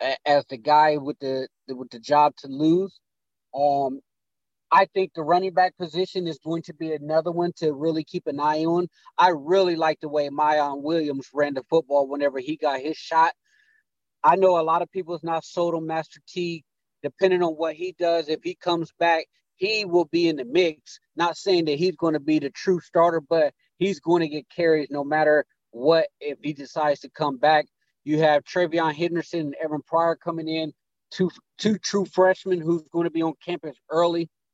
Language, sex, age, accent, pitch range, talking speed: English, male, 30-49, American, 150-175 Hz, 205 wpm